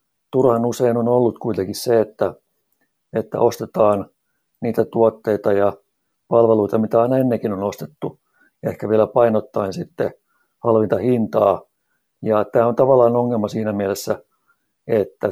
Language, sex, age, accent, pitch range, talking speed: Finnish, male, 60-79, native, 105-120 Hz, 125 wpm